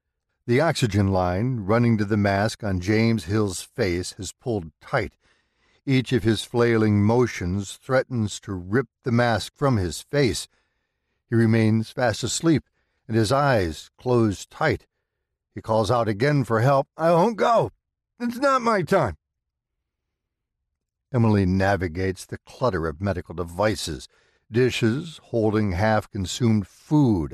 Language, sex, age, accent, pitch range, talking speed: English, male, 60-79, American, 95-130 Hz, 130 wpm